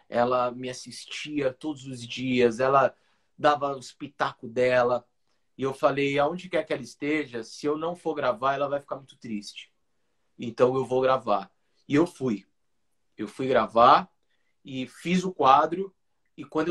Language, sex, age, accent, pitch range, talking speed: Portuguese, male, 30-49, Brazilian, 115-145 Hz, 160 wpm